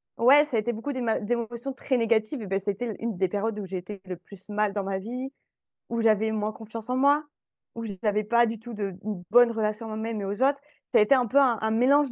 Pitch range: 205-245 Hz